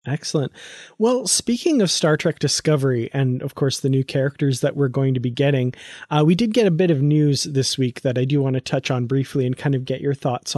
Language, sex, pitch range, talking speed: English, male, 135-155 Hz, 245 wpm